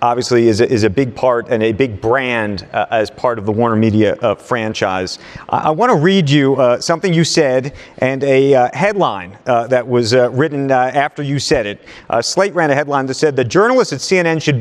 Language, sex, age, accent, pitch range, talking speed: English, male, 40-59, American, 120-155 Hz, 230 wpm